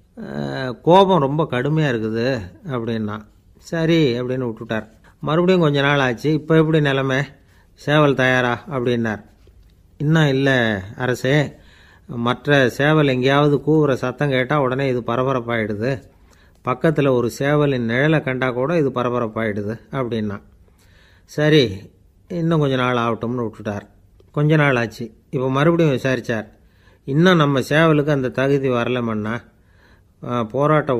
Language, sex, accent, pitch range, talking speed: Tamil, male, native, 110-145 Hz, 110 wpm